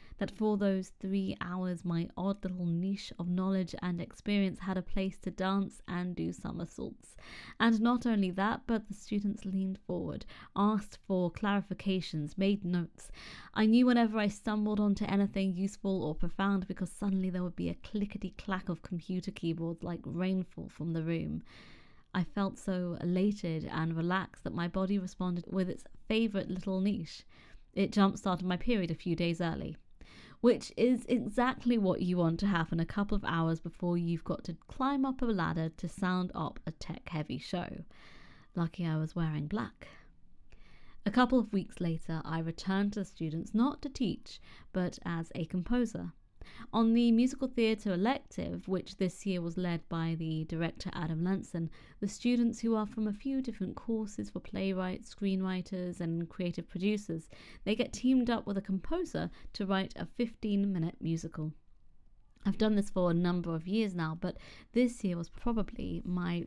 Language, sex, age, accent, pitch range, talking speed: English, female, 20-39, British, 170-210 Hz, 170 wpm